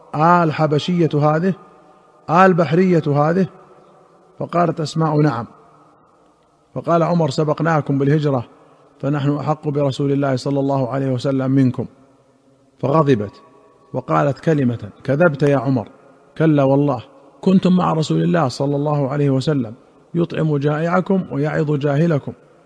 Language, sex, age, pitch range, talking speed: Arabic, male, 50-69, 135-155 Hz, 110 wpm